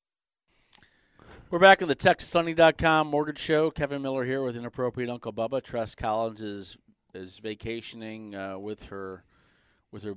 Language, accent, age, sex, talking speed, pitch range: English, American, 40-59, male, 140 wpm, 100-125 Hz